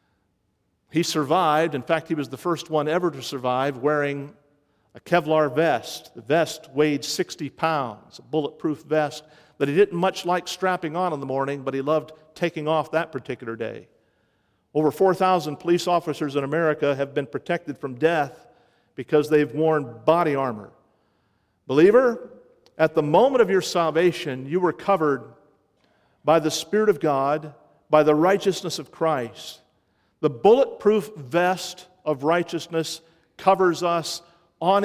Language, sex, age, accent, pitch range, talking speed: English, male, 50-69, American, 145-180 Hz, 150 wpm